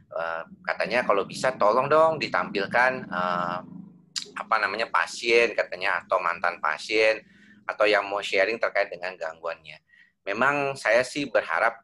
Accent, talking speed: native, 120 wpm